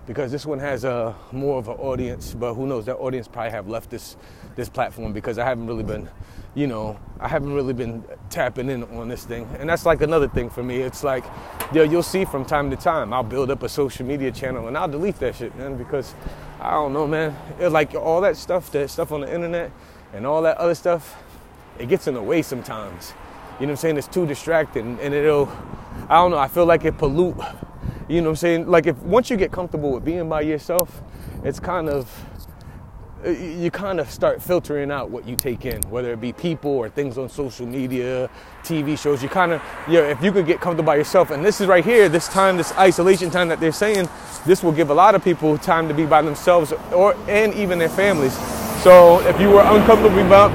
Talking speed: 235 wpm